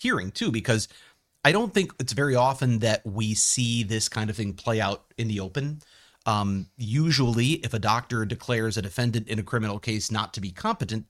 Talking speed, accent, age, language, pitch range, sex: 200 wpm, American, 40-59, English, 105-125 Hz, male